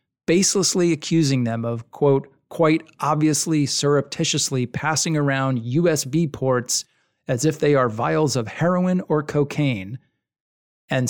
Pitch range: 125-160 Hz